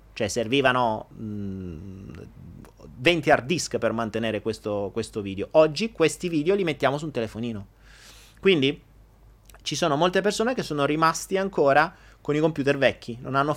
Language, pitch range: Italian, 105-170 Hz